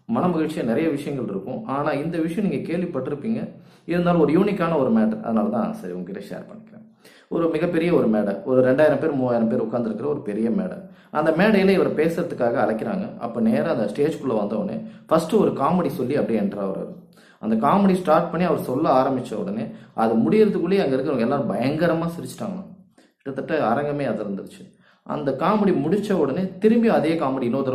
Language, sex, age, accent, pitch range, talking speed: Tamil, male, 30-49, native, 135-195 Hz, 170 wpm